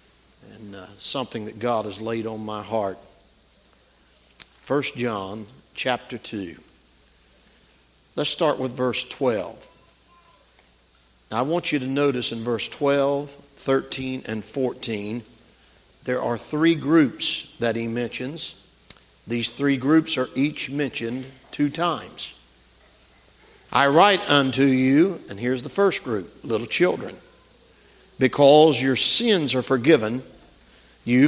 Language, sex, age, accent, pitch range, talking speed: English, male, 50-69, American, 115-155 Hz, 120 wpm